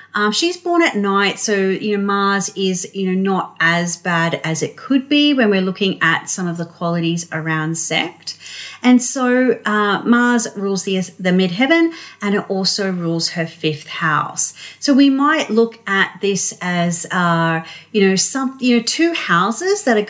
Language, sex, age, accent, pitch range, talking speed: English, female, 40-59, Australian, 165-210 Hz, 180 wpm